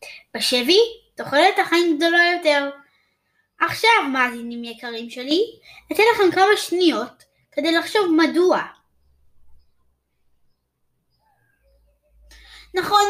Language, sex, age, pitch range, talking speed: Hebrew, female, 20-39, 245-350 Hz, 80 wpm